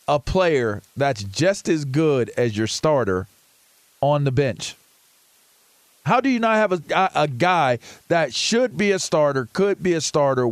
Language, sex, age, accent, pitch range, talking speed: English, male, 40-59, American, 140-190 Hz, 165 wpm